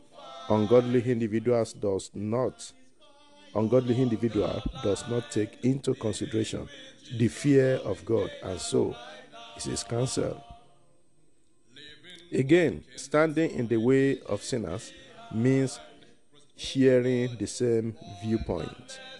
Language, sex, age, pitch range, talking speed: English, male, 50-69, 105-135 Hz, 105 wpm